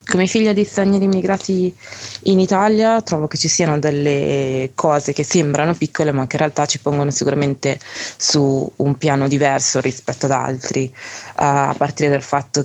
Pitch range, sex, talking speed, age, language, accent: 130-145 Hz, female, 170 wpm, 20-39, Italian, native